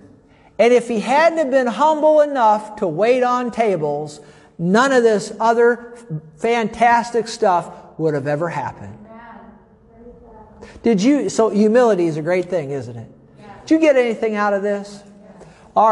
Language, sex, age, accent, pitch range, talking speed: English, male, 50-69, American, 195-235 Hz, 150 wpm